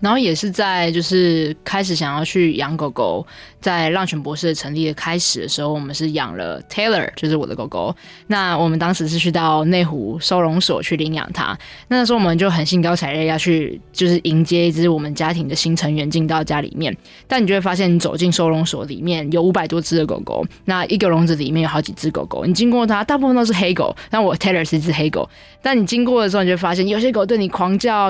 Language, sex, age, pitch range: Chinese, female, 20-39, 165-195 Hz